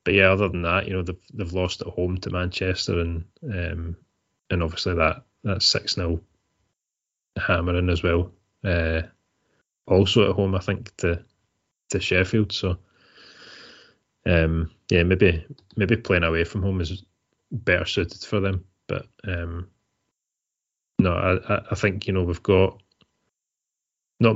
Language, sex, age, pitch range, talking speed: English, male, 30-49, 90-100 Hz, 145 wpm